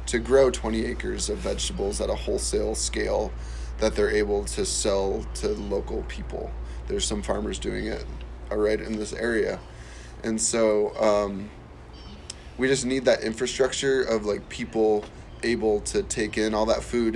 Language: English